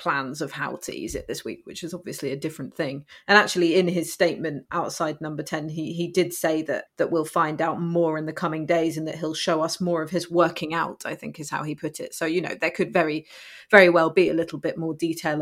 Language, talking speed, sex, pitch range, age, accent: English, 260 wpm, female, 160-180 Hz, 30-49, British